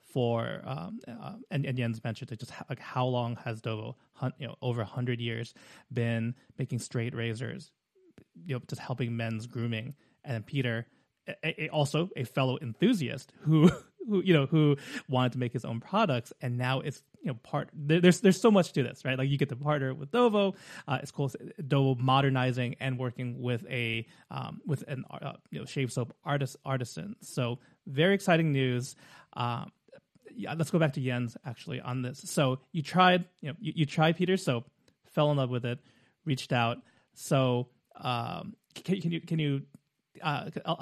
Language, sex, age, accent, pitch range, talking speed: English, male, 20-39, American, 125-155 Hz, 190 wpm